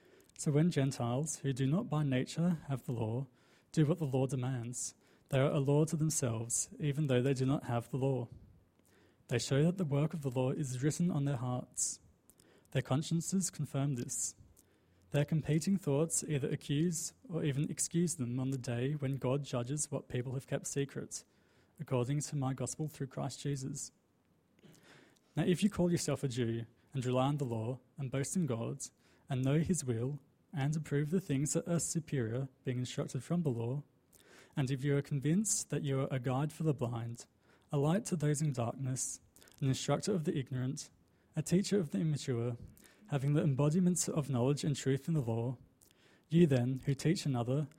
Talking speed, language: 190 wpm, English